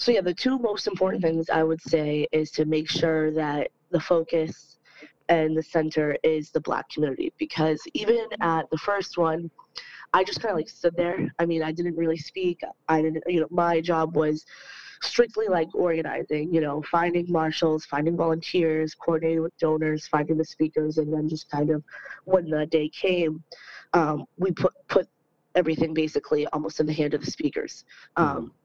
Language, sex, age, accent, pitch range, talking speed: English, female, 20-39, American, 155-180 Hz, 185 wpm